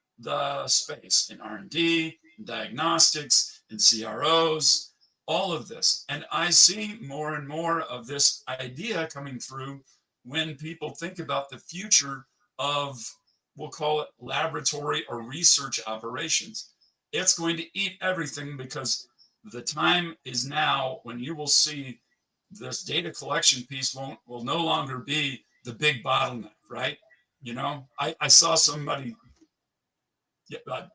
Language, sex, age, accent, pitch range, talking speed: English, male, 50-69, American, 130-165 Hz, 130 wpm